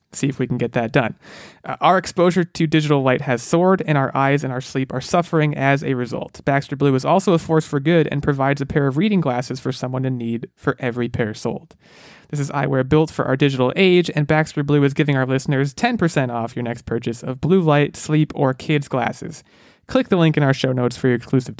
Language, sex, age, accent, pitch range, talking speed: English, male, 30-49, American, 120-155 Hz, 240 wpm